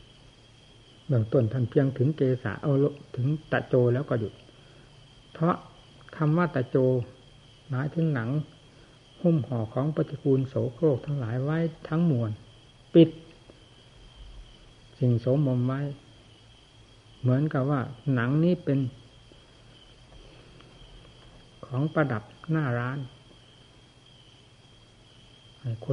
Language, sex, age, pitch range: Thai, male, 60-79, 115-140 Hz